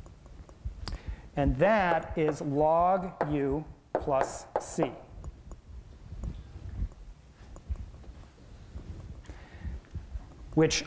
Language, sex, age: English, male, 40-59